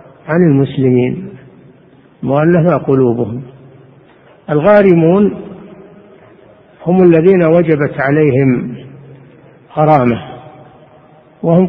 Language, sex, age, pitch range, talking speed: Arabic, male, 60-79, 140-165 Hz, 55 wpm